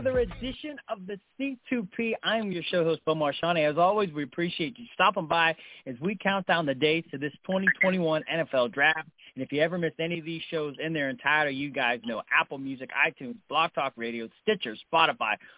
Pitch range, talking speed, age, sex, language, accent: 145-185 Hz, 205 wpm, 40-59, male, English, American